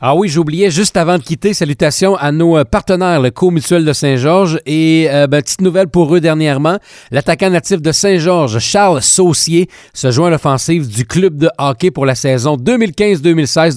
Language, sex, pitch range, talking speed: French, male, 135-180 Hz, 180 wpm